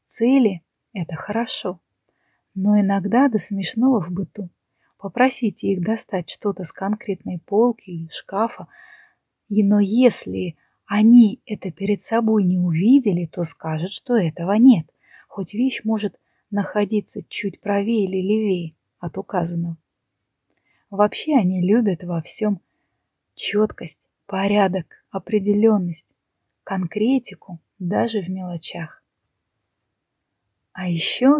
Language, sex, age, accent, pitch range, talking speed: Russian, female, 20-39, native, 185-220 Hz, 105 wpm